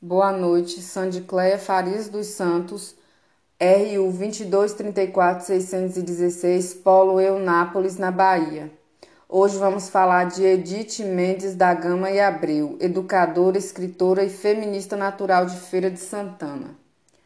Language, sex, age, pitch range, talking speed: Portuguese, female, 20-39, 180-200 Hz, 110 wpm